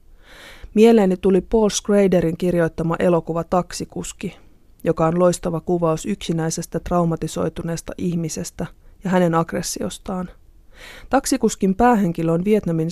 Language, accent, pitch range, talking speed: Finnish, native, 165-200 Hz, 100 wpm